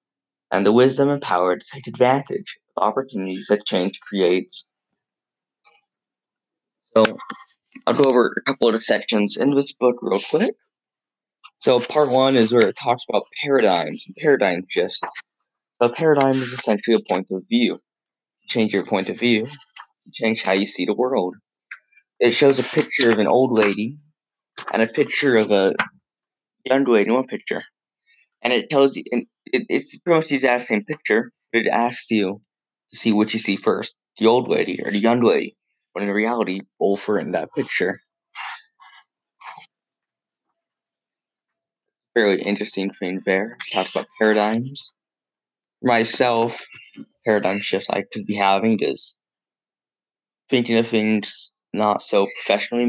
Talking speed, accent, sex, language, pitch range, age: 160 wpm, American, male, English, 105-125 Hz, 20-39